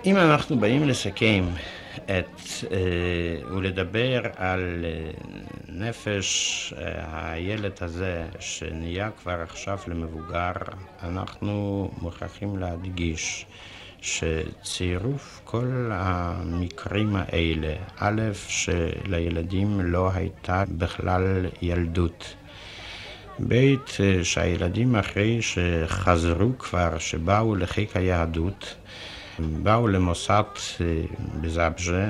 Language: Hebrew